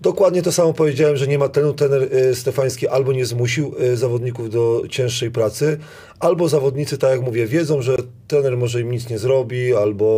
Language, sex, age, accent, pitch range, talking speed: Polish, male, 30-49, native, 115-145 Hz, 195 wpm